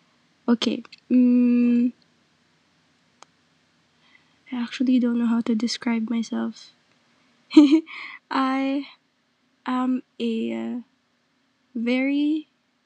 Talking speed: 65 wpm